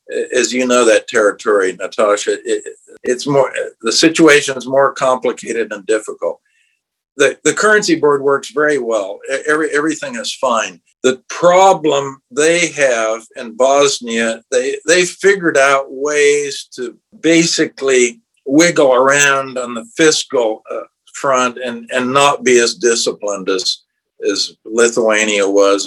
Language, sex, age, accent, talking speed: English, male, 60-79, American, 130 wpm